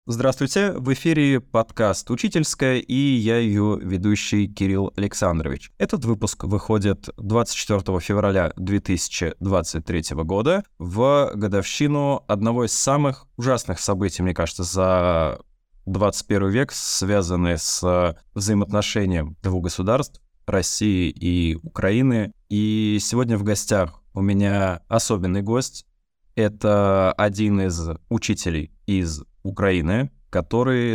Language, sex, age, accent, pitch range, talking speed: Russian, male, 20-39, native, 90-115 Hz, 105 wpm